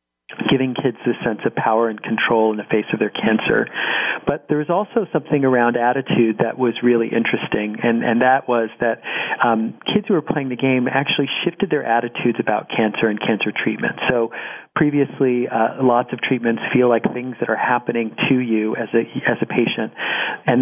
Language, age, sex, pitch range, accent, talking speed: English, 40-59, male, 115-130 Hz, American, 190 wpm